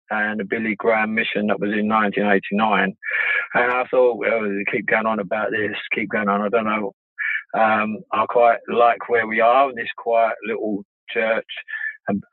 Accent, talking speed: British, 180 wpm